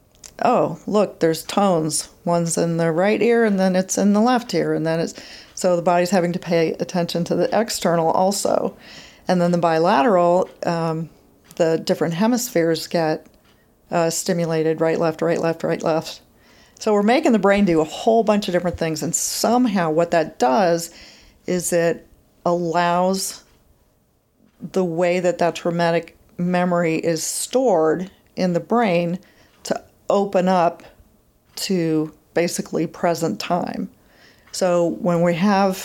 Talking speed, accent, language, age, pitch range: 145 wpm, American, English, 40-59, 165-190 Hz